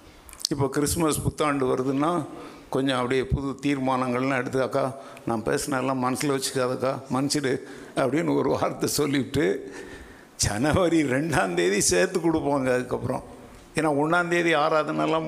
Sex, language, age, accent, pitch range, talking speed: male, Tamil, 60-79, native, 130-160 Hz, 105 wpm